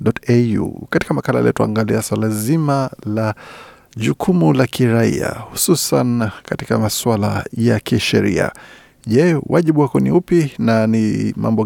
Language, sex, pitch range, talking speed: Swahili, male, 110-135 Hz, 125 wpm